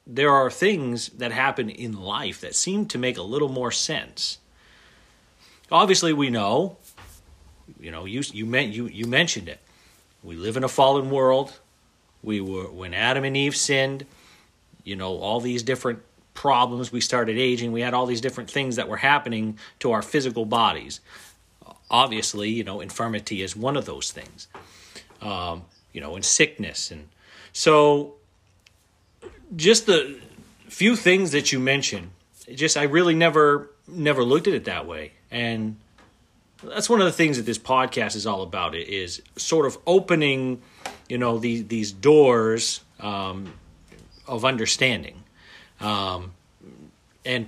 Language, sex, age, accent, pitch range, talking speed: English, male, 40-59, American, 105-135 Hz, 155 wpm